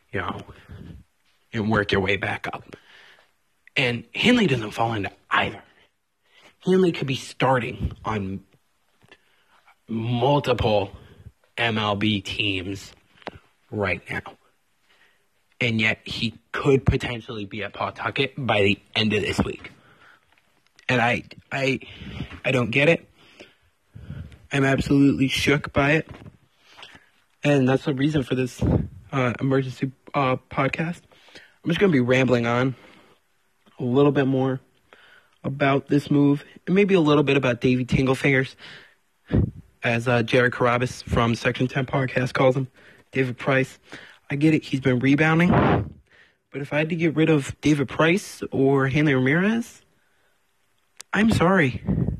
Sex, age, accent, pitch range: male, 30-49, American, 110-145 Hz